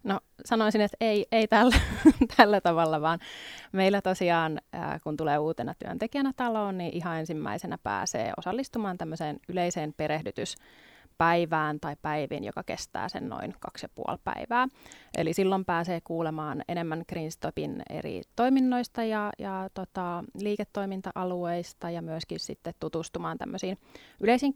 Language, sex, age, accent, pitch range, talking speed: Finnish, female, 30-49, native, 165-220 Hz, 125 wpm